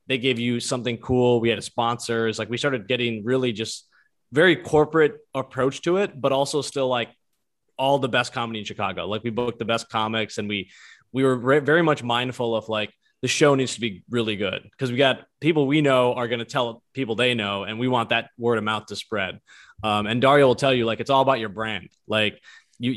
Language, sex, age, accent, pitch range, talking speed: English, male, 20-39, American, 115-145 Hz, 230 wpm